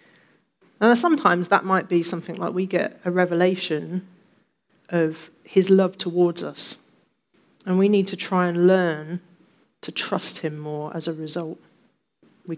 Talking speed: 150 wpm